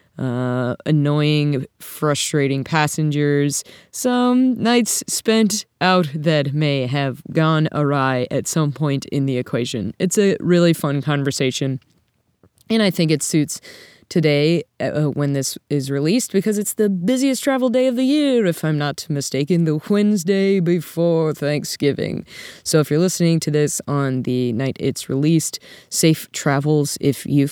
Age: 20-39